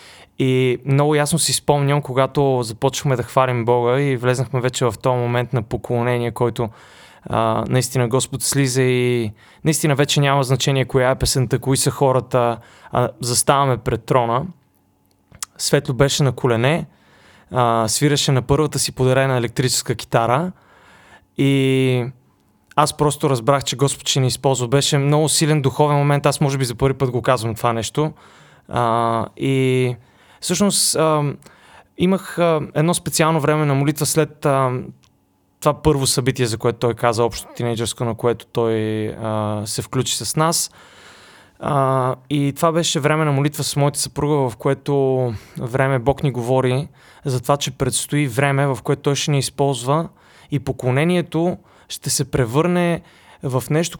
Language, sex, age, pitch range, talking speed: Bulgarian, male, 20-39, 125-145 Hz, 150 wpm